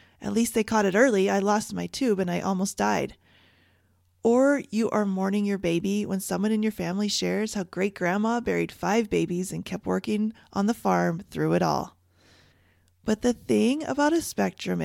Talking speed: 190 wpm